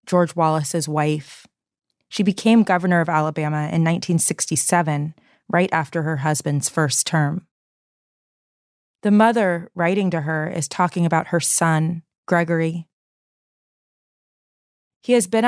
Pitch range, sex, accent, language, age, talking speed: 165-195 Hz, female, American, English, 20-39, 115 wpm